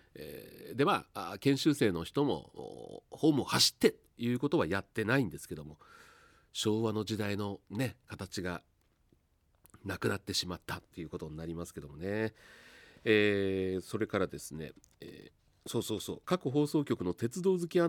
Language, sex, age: Japanese, male, 40-59